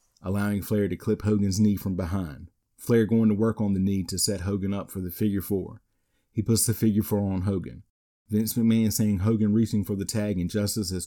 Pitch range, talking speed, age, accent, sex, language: 95-110 Hz, 220 wpm, 40-59, American, male, English